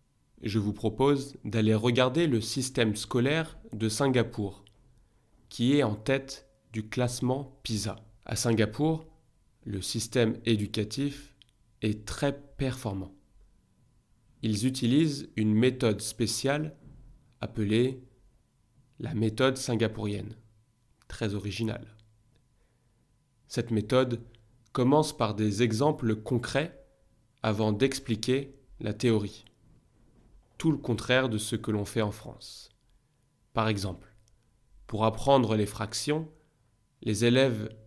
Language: French